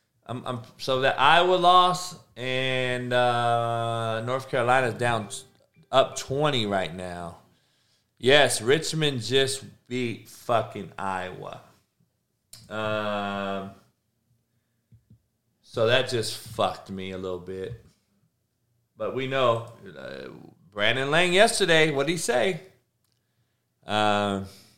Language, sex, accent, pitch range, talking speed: English, male, American, 110-130 Hz, 105 wpm